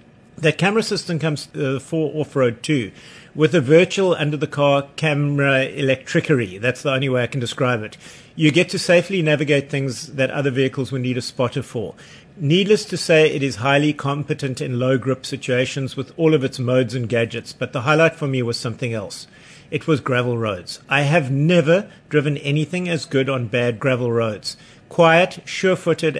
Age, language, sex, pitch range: 50-69, English, male, 130-160 Hz